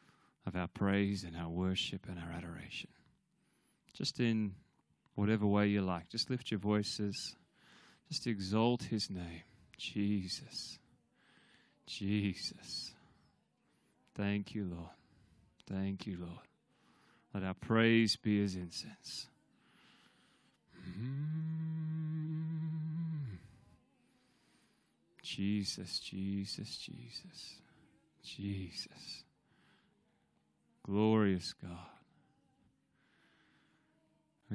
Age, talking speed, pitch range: 20-39, 75 wpm, 95-120 Hz